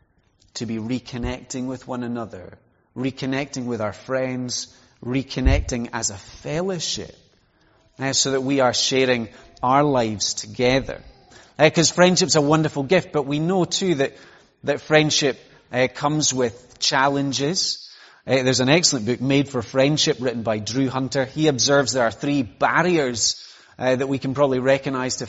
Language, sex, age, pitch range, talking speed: English, male, 30-49, 115-145 Hz, 155 wpm